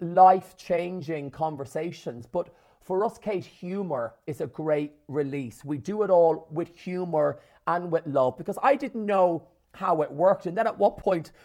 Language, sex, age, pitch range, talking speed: English, male, 30-49, 150-195 Hz, 170 wpm